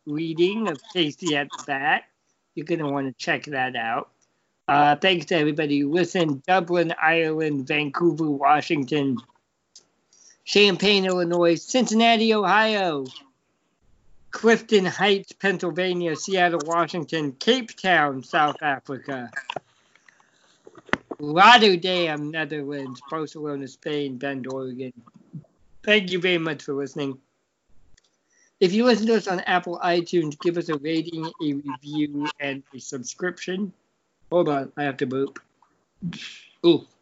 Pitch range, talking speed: 145-180 Hz, 120 wpm